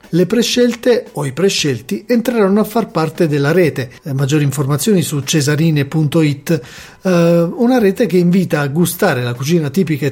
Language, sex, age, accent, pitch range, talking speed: Italian, male, 40-59, native, 150-195 Hz, 150 wpm